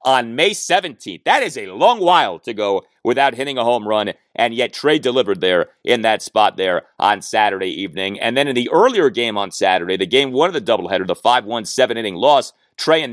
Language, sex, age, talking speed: English, male, 30-49, 225 wpm